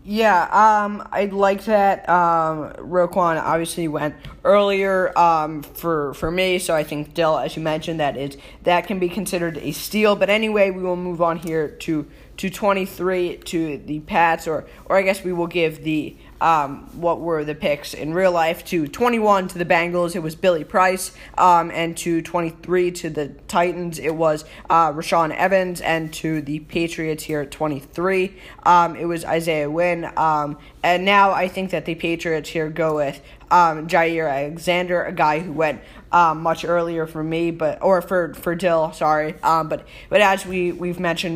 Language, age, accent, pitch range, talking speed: English, 10-29, American, 155-180 Hz, 185 wpm